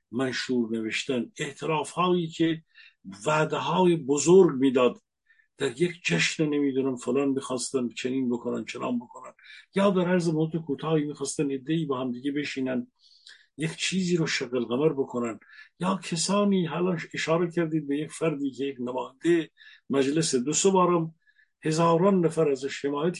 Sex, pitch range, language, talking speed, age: male, 145-195 Hz, Persian, 130 wpm, 50-69